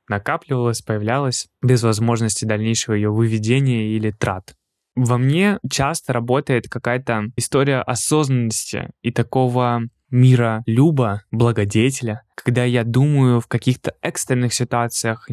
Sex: male